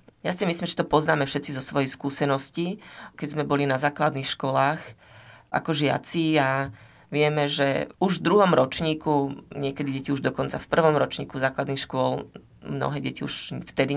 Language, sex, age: Slovak, female, 30-49